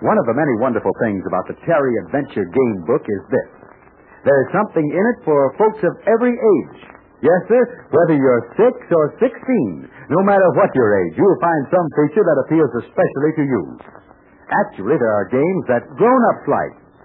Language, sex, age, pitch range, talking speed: English, male, 60-79, 155-215 Hz, 185 wpm